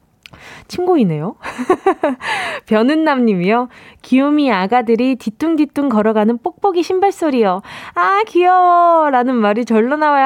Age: 20-39